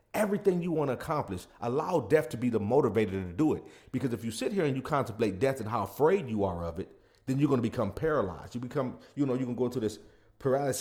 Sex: male